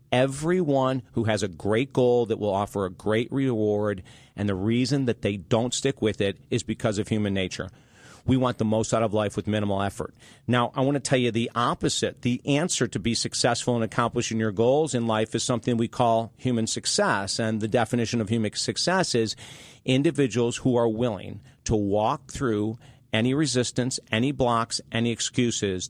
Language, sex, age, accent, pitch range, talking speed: English, male, 40-59, American, 110-130 Hz, 190 wpm